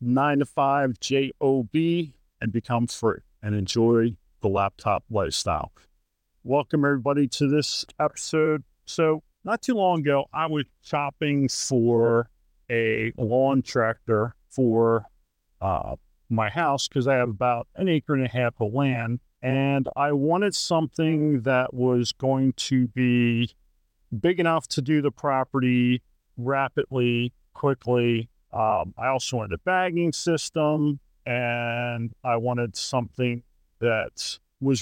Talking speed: 130 wpm